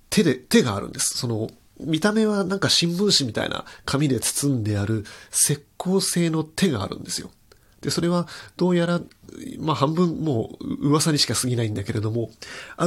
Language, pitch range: Japanese, 110-150 Hz